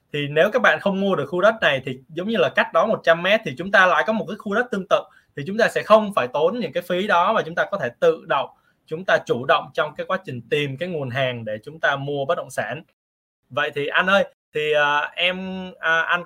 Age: 20-39